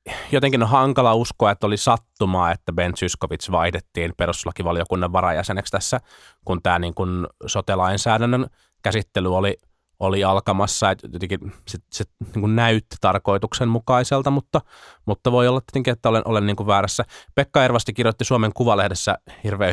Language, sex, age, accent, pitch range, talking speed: Finnish, male, 20-39, native, 95-120 Hz, 145 wpm